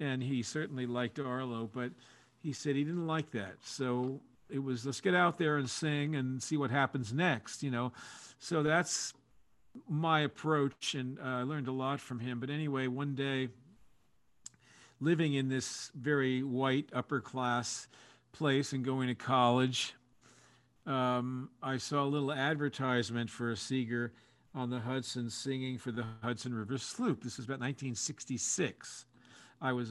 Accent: American